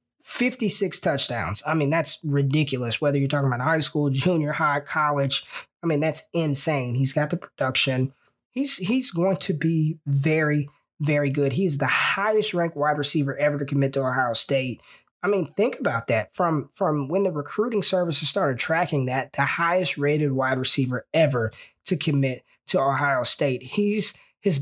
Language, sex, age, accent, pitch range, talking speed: English, male, 20-39, American, 135-165 Hz, 165 wpm